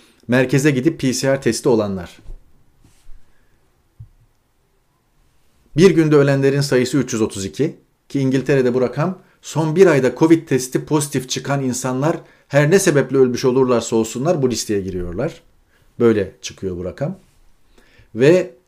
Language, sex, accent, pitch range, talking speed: Turkish, male, native, 110-140 Hz, 115 wpm